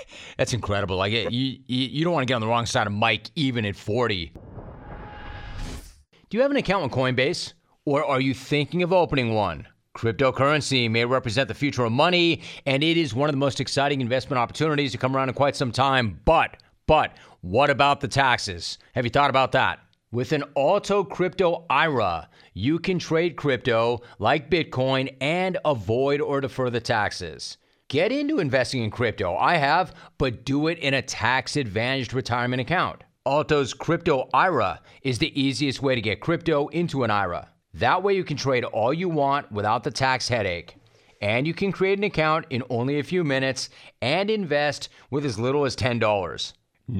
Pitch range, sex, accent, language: 120-150 Hz, male, American, English